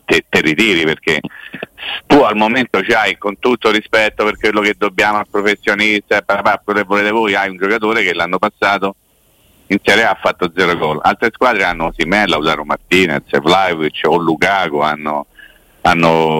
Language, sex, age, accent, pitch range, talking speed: Italian, male, 50-69, native, 90-115 Hz, 170 wpm